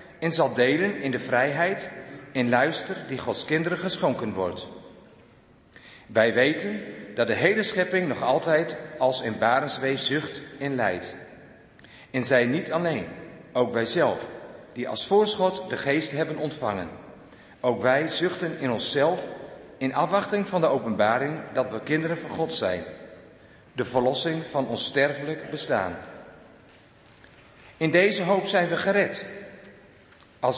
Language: Dutch